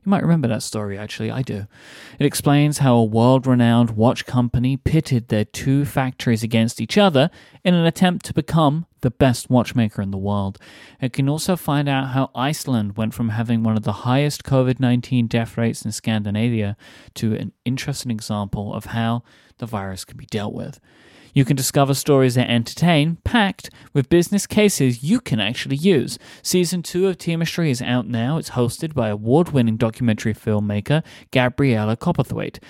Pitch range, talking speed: 115-150 Hz, 175 wpm